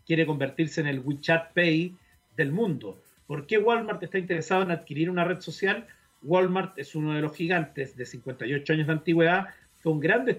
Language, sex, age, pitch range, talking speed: Spanish, male, 40-59, 145-180 Hz, 180 wpm